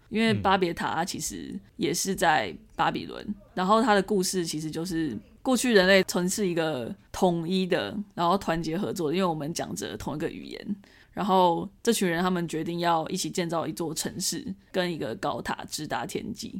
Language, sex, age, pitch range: Chinese, female, 20-39, 170-205 Hz